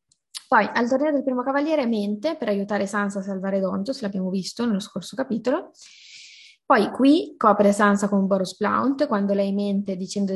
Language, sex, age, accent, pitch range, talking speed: Italian, female, 20-39, native, 195-225 Hz, 175 wpm